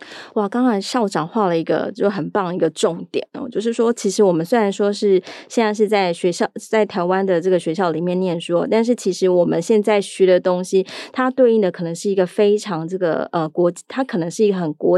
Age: 20-39